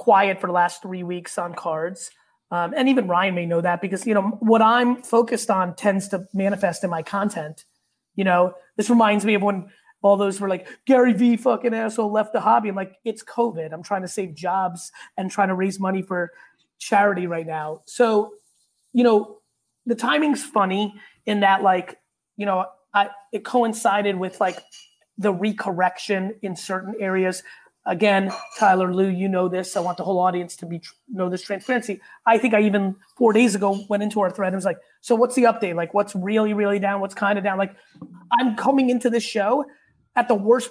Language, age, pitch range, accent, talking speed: English, 30-49, 185-225 Hz, American, 200 wpm